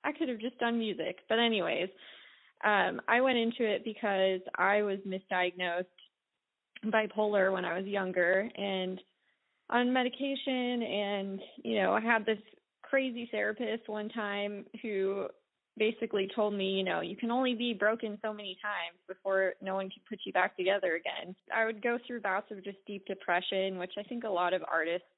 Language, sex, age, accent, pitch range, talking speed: English, female, 20-39, American, 190-230 Hz, 175 wpm